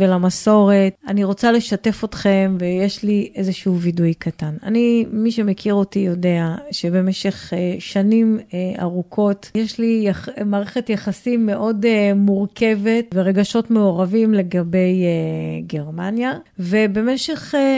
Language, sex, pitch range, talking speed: Hebrew, female, 185-225 Hz, 100 wpm